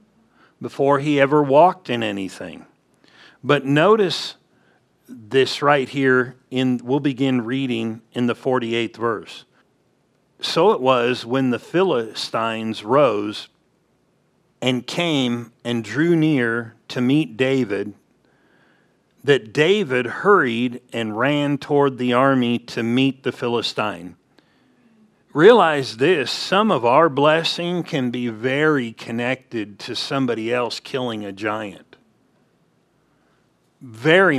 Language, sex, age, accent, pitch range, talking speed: English, male, 50-69, American, 120-145 Hz, 110 wpm